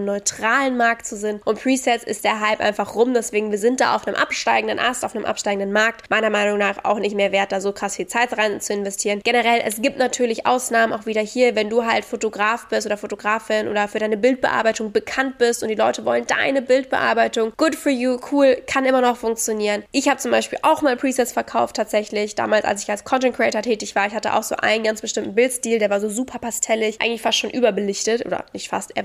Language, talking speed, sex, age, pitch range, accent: German, 230 wpm, female, 10-29, 205-245 Hz, German